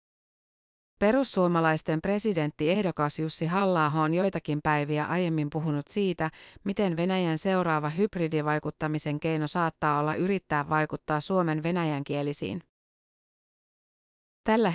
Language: Finnish